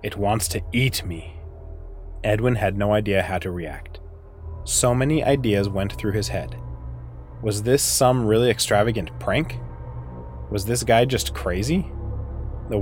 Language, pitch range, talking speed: English, 95-125 Hz, 145 wpm